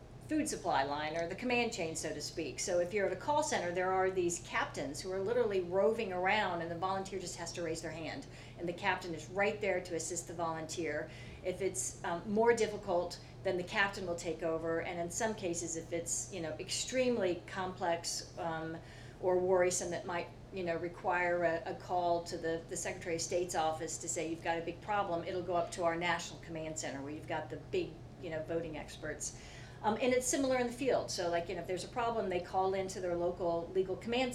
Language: English